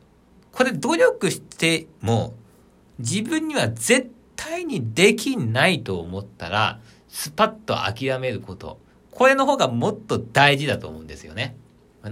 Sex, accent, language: male, native, Japanese